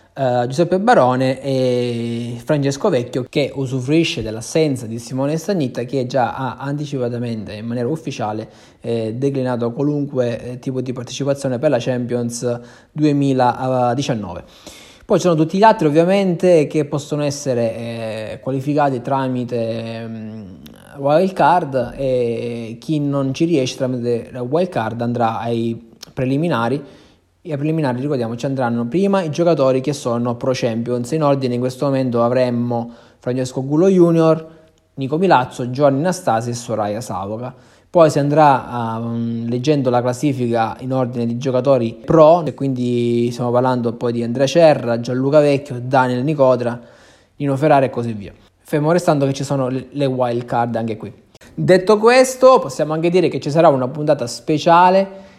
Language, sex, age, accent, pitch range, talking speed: Italian, male, 20-39, native, 120-150 Hz, 140 wpm